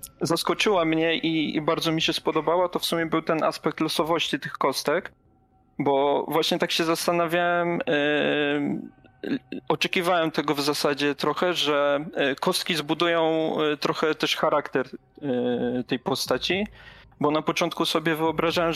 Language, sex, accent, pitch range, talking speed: Polish, male, native, 150-170 Hz, 130 wpm